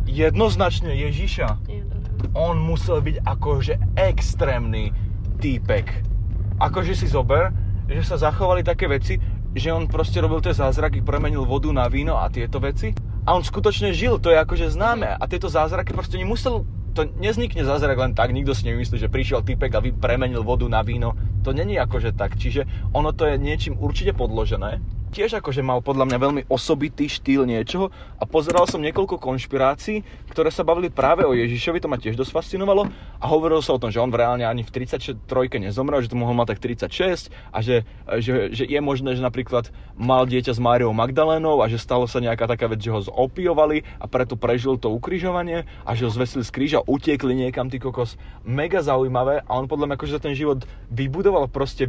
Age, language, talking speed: 20-39, Slovak, 190 wpm